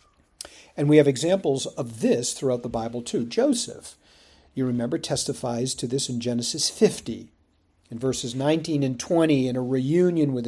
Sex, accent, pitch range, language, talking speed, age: male, American, 120-155 Hz, English, 160 wpm, 50-69